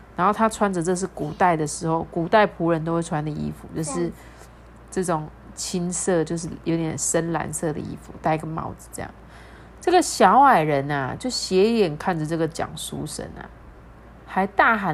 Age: 30-49